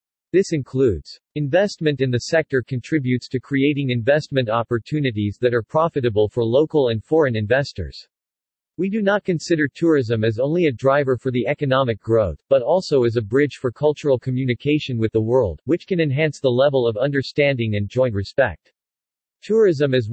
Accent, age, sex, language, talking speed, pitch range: American, 50-69, male, English, 165 wpm, 120-150 Hz